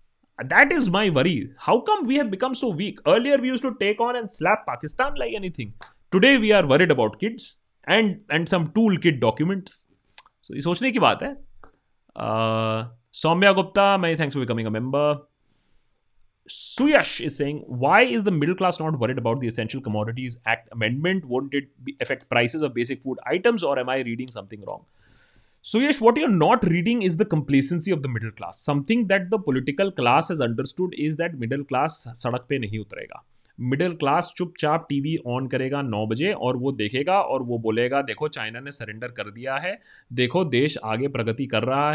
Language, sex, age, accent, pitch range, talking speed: Hindi, male, 30-49, native, 120-190 Hz, 195 wpm